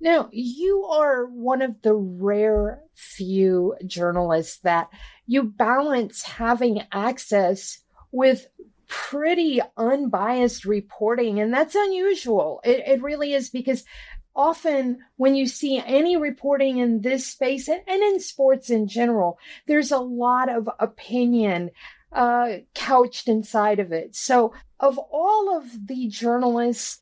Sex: female